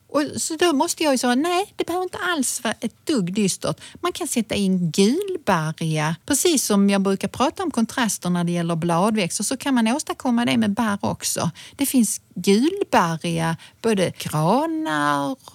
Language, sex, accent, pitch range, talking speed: Swedish, female, native, 180-260 Hz, 170 wpm